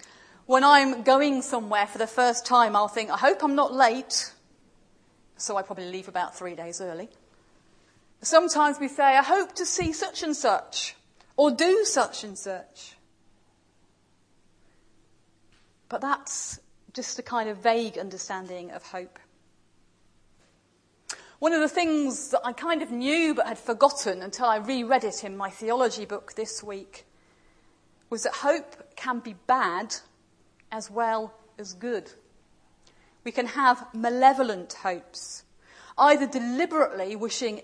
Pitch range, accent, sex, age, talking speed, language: 190-265 Hz, British, female, 40-59, 140 wpm, English